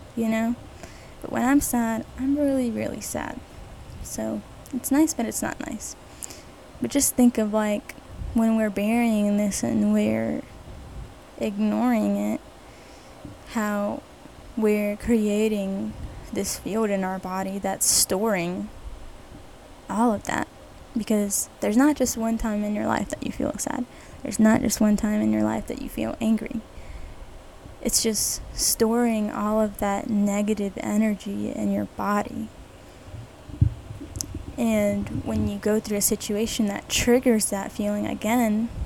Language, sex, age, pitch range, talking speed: English, female, 10-29, 200-230 Hz, 140 wpm